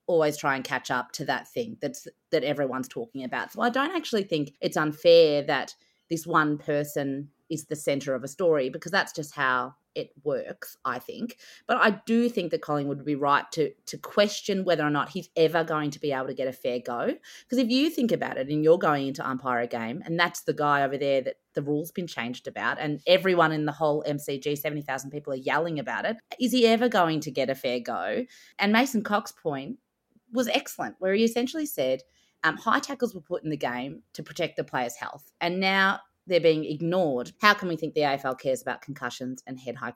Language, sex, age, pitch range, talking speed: English, female, 30-49, 135-190 Hz, 225 wpm